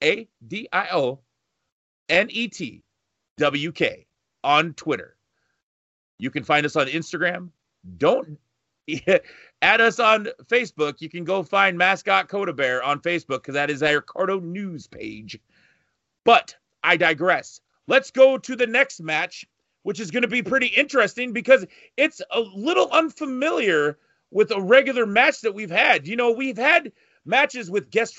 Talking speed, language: 140 wpm, English